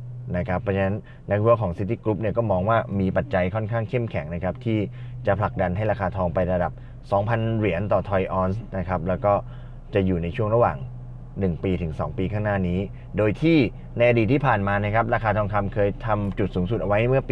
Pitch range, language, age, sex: 95-125 Hz, Thai, 20-39, male